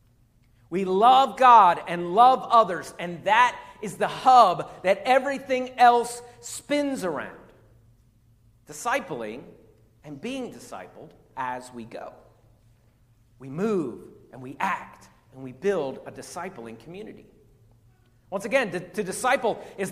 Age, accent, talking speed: 40-59, American, 120 wpm